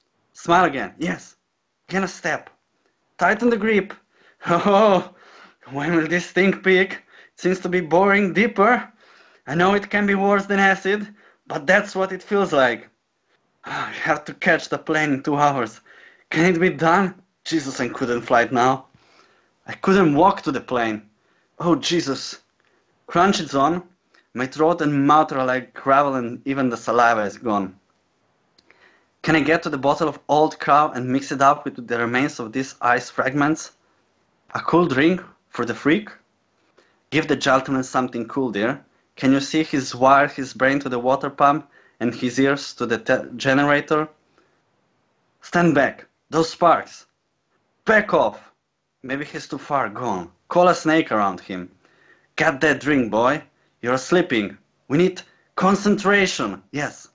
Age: 20-39